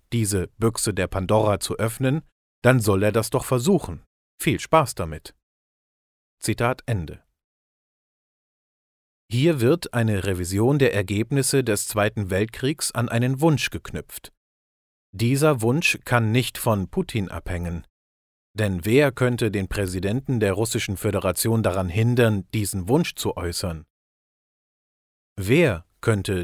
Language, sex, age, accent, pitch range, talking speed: German, male, 40-59, German, 90-125 Hz, 120 wpm